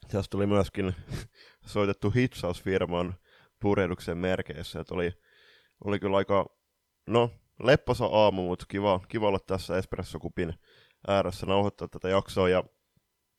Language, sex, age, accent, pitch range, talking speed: Finnish, male, 20-39, native, 90-105 Hz, 115 wpm